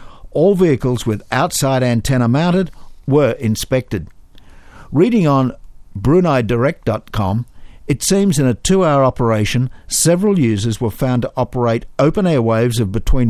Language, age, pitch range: English, 60-79, 110-150 Hz